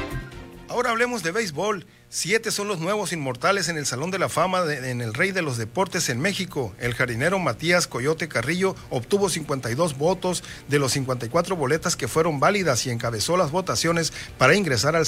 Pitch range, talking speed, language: 130-175 Hz, 185 wpm, Spanish